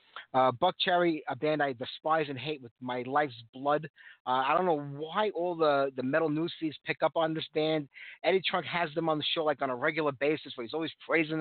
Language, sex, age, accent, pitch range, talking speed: English, male, 30-49, American, 135-175 Hz, 230 wpm